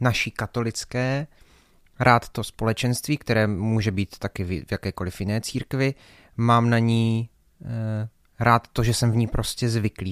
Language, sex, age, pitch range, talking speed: Czech, male, 30-49, 105-130 Hz, 140 wpm